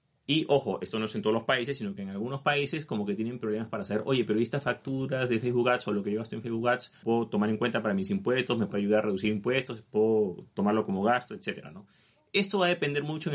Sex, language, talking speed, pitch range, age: male, Spanish, 270 wpm, 110-135 Hz, 30-49